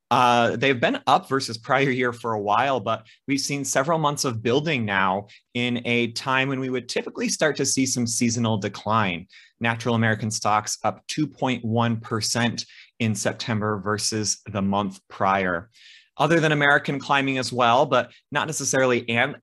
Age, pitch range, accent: 30-49, 110-130 Hz, American